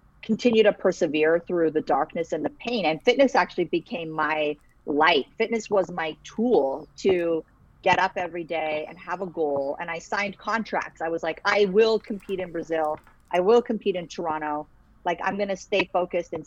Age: 40-59